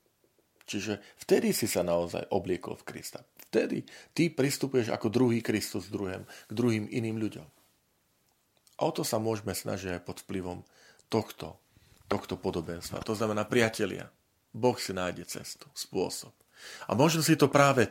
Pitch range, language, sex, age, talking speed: 95-120 Hz, Slovak, male, 40-59, 145 wpm